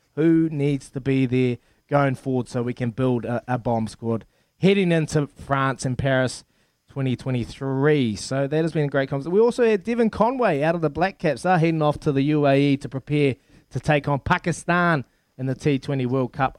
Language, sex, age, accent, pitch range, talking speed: English, male, 20-39, Australian, 125-155 Hz, 205 wpm